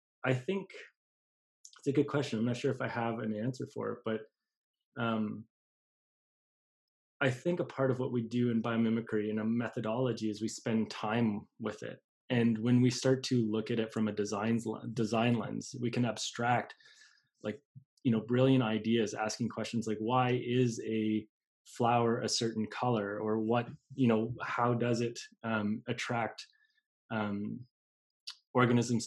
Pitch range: 110-125 Hz